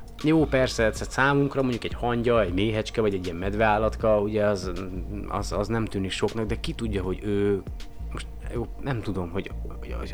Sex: male